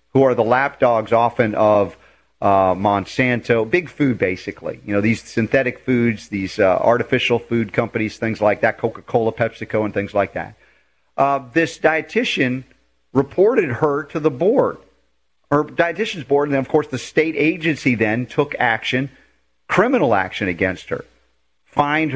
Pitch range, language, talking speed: 115-160 Hz, English, 155 wpm